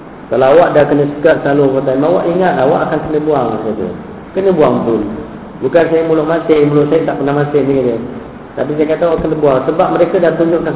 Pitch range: 120-150 Hz